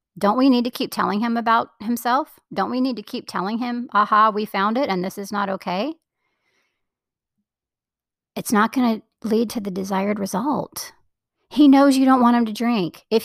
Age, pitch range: 40-59, 180-235 Hz